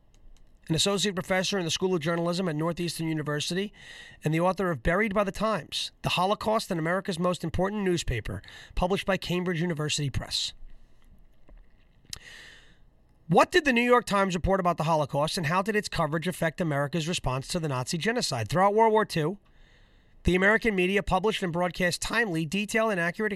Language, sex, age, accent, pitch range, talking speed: English, male, 30-49, American, 160-210 Hz, 170 wpm